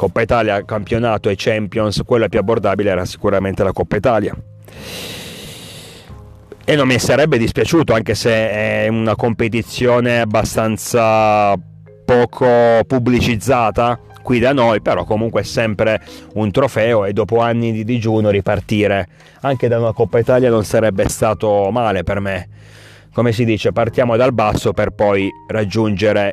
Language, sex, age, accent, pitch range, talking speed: Italian, male, 30-49, native, 100-115 Hz, 140 wpm